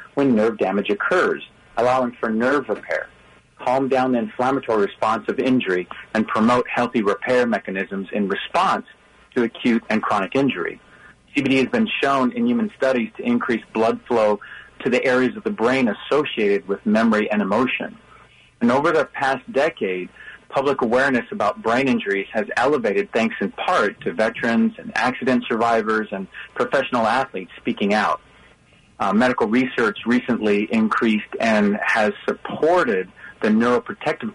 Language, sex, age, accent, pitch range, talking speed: English, male, 40-59, American, 105-130 Hz, 145 wpm